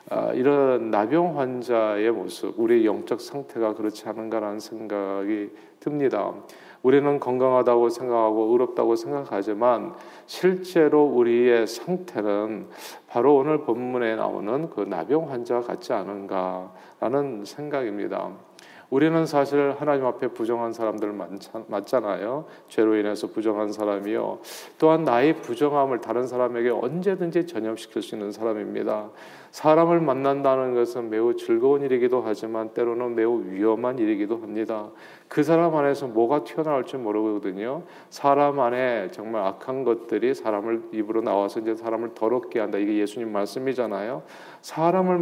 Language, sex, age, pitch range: Korean, male, 40-59, 110-145 Hz